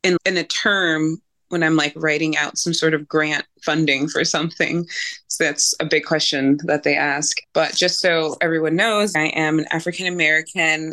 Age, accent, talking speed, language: 20-39, American, 180 wpm, English